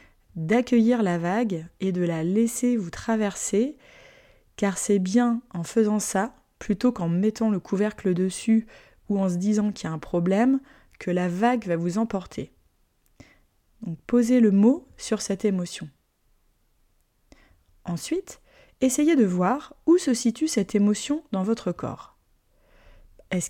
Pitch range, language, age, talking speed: 170-240 Hz, French, 20-39, 145 wpm